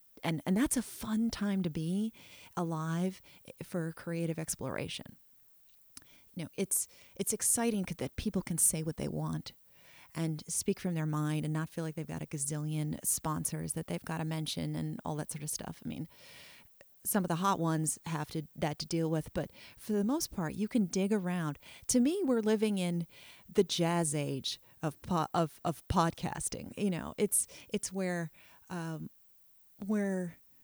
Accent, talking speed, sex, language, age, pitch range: American, 180 wpm, female, English, 30-49, 155-195 Hz